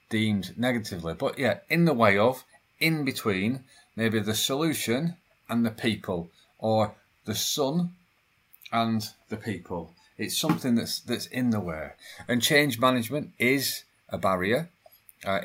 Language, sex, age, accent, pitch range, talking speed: English, male, 30-49, British, 100-135 Hz, 140 wpm